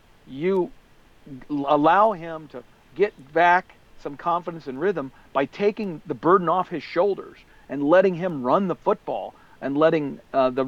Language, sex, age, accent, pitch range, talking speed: English, male, 50-69, American, 150-210 Hz, 150 wpm